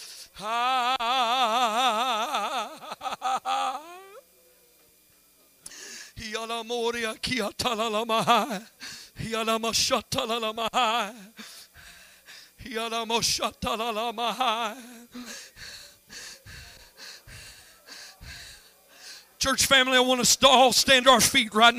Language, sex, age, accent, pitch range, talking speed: English, male, 50-69, American, 230-295 Hz, 35 wpm